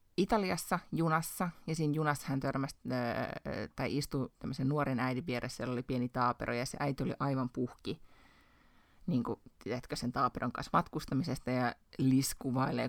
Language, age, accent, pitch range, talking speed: Finnish, 30-49, native, 125-150 Hz, 135 wpm